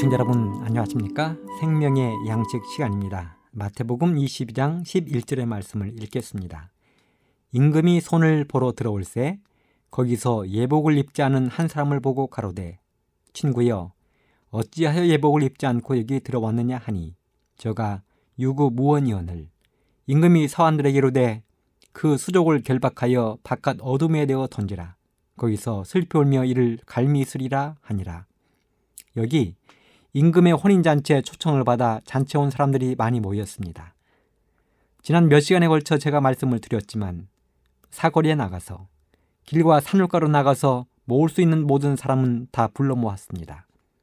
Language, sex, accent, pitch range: Korean, male, native, 110-150 Hz